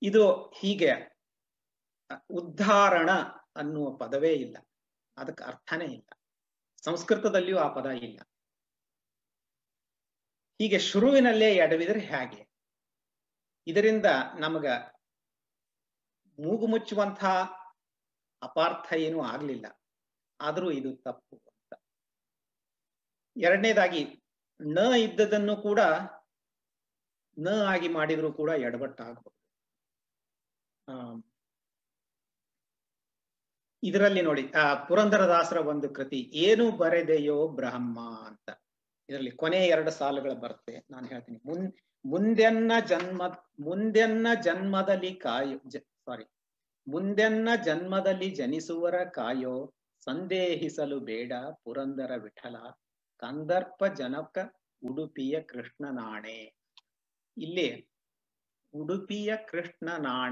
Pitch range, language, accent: 135-195 Hz, Kannada, native